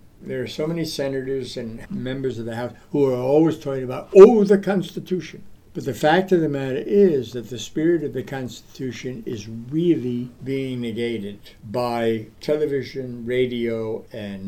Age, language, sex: 60-79, English, male